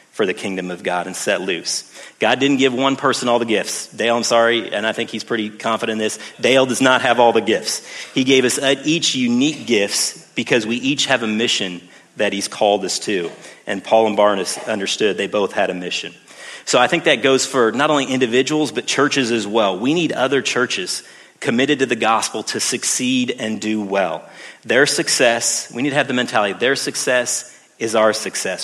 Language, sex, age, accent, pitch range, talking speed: English, male, 40-59, American, 110-135 Hz, 210 wpm